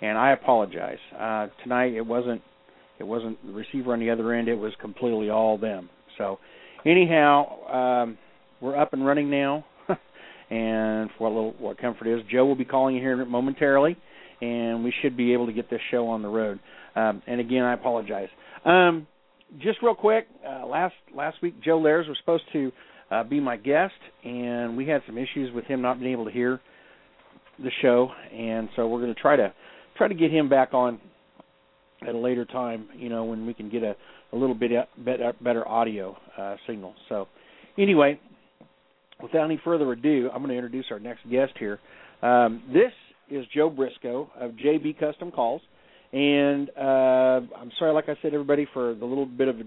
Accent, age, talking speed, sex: American, 50-69, 190 wpm, male